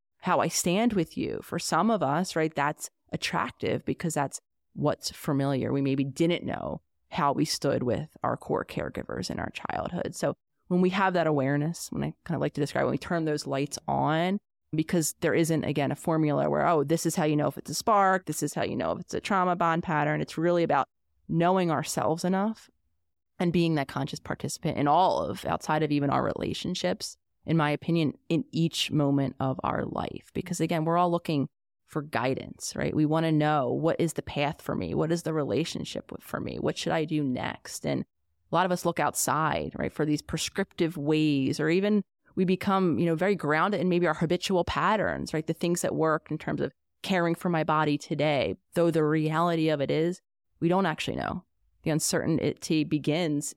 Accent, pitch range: American, 145-170 Hz